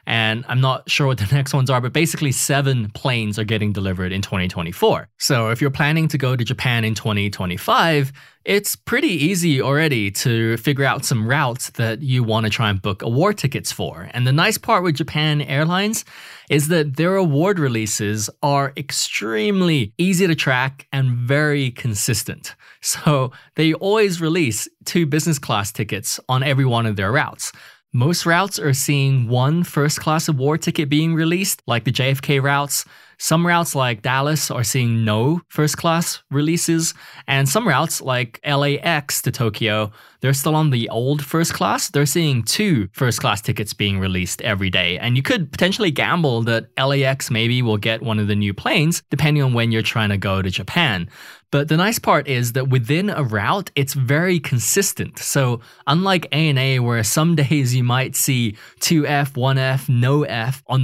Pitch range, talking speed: 115-155 Hz, 175 wpm